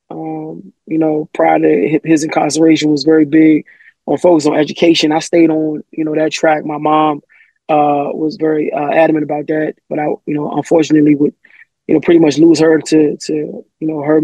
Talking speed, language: 200 wpm, English